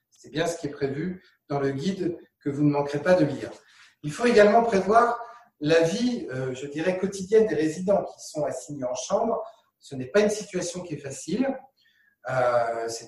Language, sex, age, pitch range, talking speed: French, male, 40-59, 145-185 Hz, 190 wpm